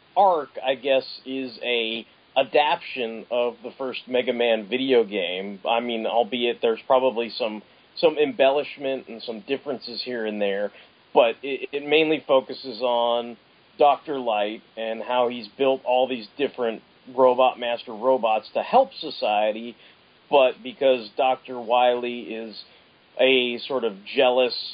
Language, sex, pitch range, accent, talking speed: English, male, 110-130 Hz, American, 140 wpm